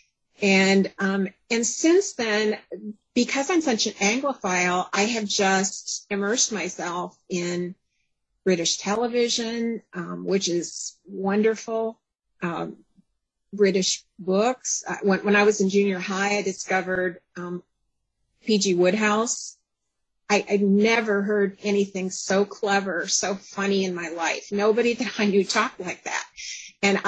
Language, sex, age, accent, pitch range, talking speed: English, female, 40-59, American, 185-215 Hz, 130 wpm